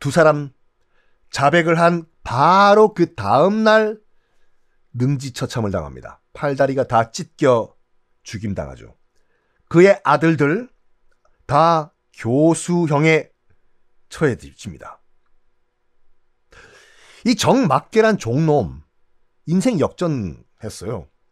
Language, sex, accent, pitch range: Korean, male, native, 125-210 Hz